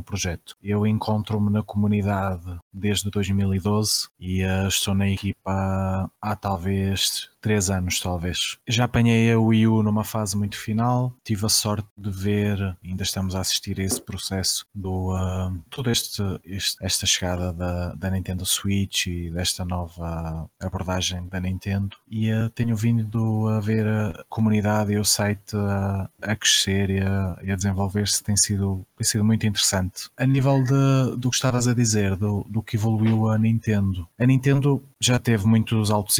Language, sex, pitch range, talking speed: Portuguese, male, 95-110 Hz, 160 wpm